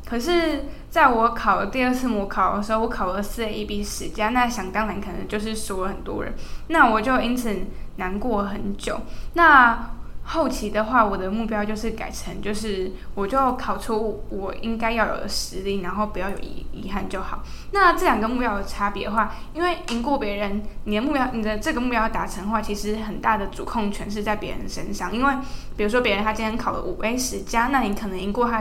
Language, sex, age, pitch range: Chinese, female, 10-29, 205-240 Hz